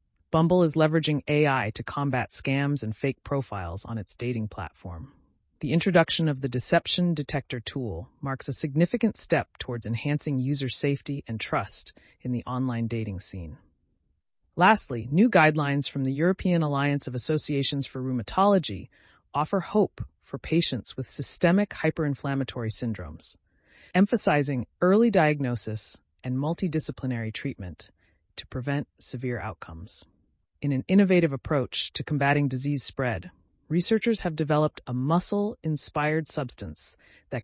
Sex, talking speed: female, 130 wpm